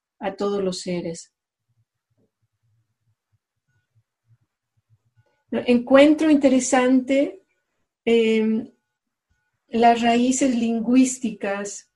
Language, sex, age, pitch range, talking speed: English, female, 40-59, 190-250 Hz, 50 wpm